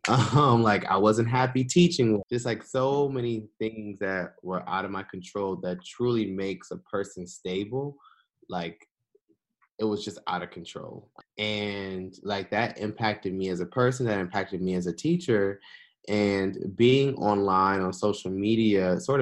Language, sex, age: English, male, 20-39